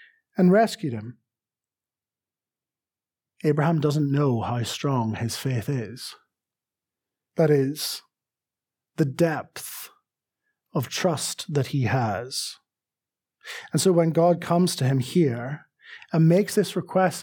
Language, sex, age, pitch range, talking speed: English, male, 30-49, 140-195 Hz, 110 wpm